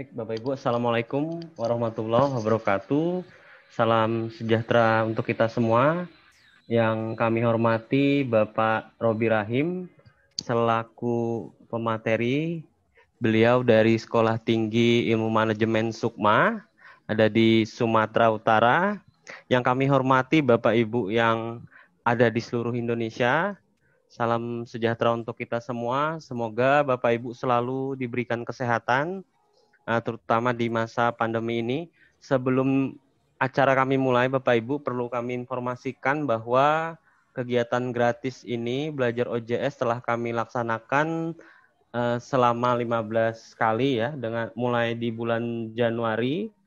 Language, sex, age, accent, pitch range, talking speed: Indonesian, male, 30-49, native, 115-130 Hz, 105 wpm